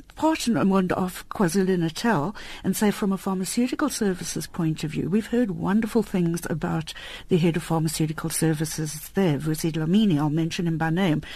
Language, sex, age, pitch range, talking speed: English, female, 60-79, 160-190 Hz, 165 wpm